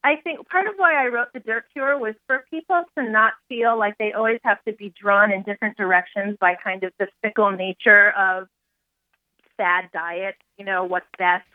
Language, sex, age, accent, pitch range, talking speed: English, female, 30-49, American, 185-225 Hz, 205 wpm